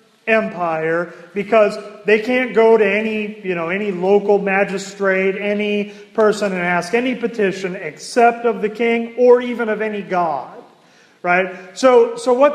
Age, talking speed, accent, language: 40-59, 150 wpm, American, English